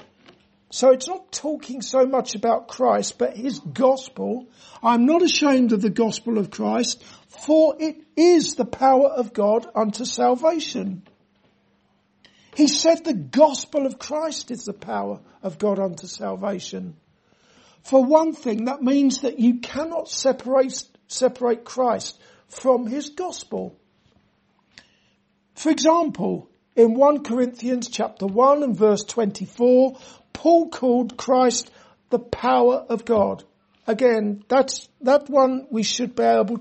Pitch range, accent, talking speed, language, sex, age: 215-265 Hz, British, 130 wpm, English, male, 50-69